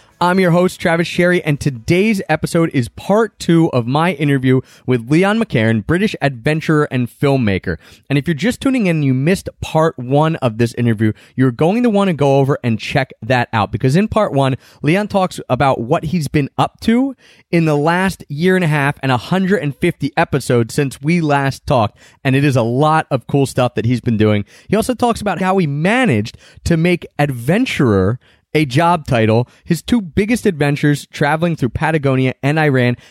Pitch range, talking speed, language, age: 125-165 Hz, 190 wpm, English, 30-49